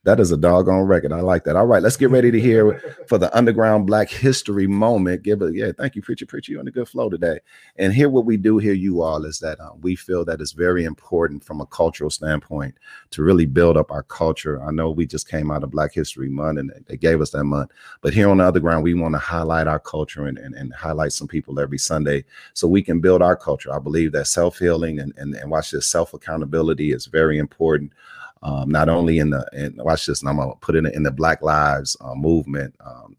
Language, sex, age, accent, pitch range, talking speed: English, male, 40-59, American, 75-90 Hz, 250 wpm